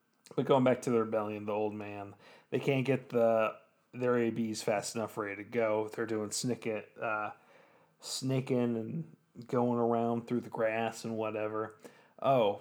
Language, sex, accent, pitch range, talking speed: English, male, American, 110-125 Hz, 160 wpm